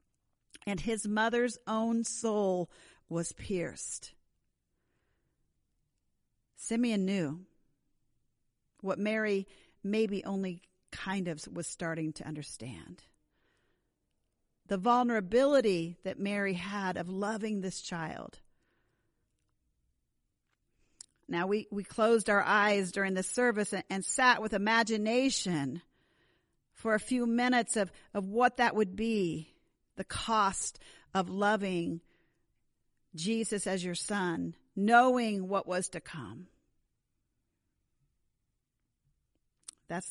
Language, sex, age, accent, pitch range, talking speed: English, female, 50-69, American, 170-220 Hz, 100 wpm